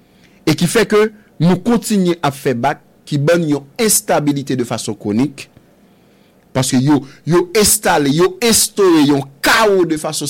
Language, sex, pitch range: English, male, 135-220 Hz